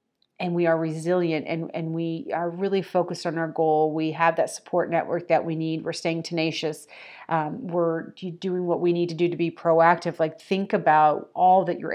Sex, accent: female, American